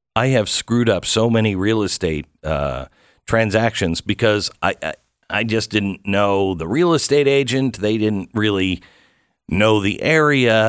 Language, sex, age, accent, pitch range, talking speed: English, male, 50-69, American, 100-120 Hz, 150 wpm